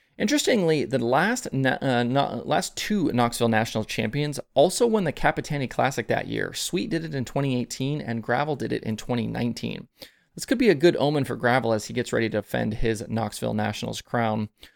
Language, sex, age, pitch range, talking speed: English, male, 20-39, 110-140 Hz, 185 wpm